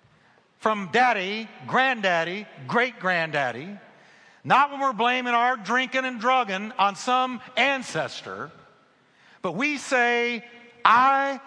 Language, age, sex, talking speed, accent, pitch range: English, 50-69, male, 100 wpm, American, 135-215 Hz